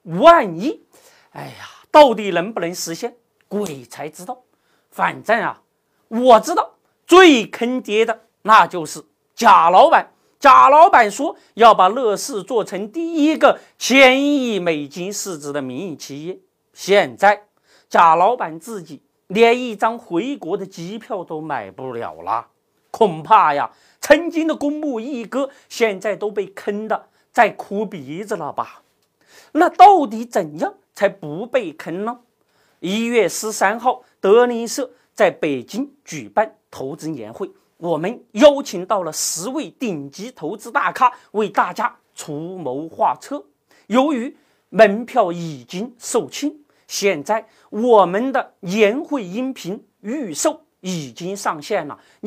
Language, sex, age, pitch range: Chinese, male, 40-59, 190-270 Hz